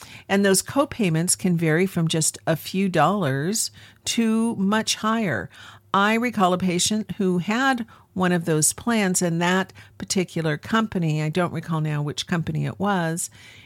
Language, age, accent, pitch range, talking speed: English, 50-69, American, 150-195 Hz, 155 wpm